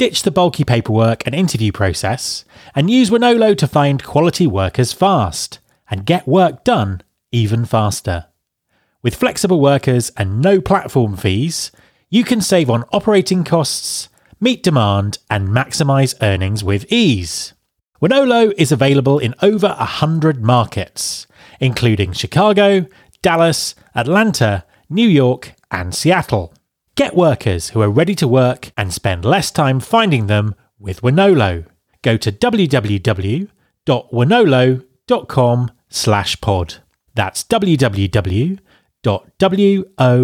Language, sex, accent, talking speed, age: English, male, British, 115 wpm, 30-49